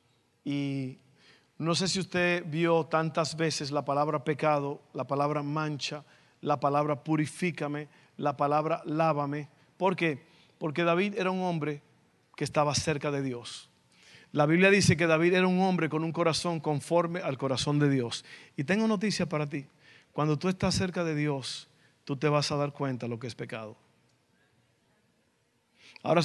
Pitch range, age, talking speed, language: 145-170 Hz, 50-69, 160 wpm, Spanish